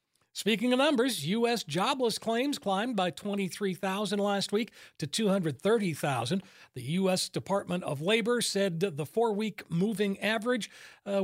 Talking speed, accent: 130 wpm, American